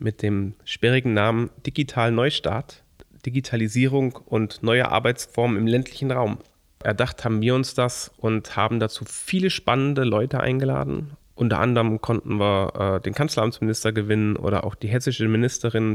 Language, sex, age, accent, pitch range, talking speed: German, male, 30-49, German, 110-130 Hz, 145 wpm